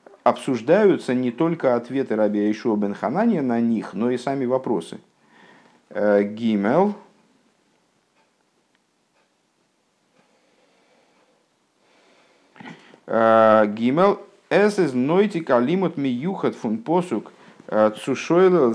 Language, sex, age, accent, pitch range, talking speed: Russian, male, 50-69, native, 110-160 Hz, 75 wpm